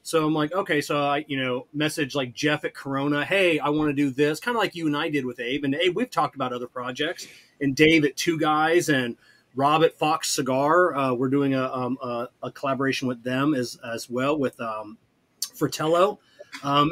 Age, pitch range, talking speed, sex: 30-49, 130-160 Hz, 220 wpm, male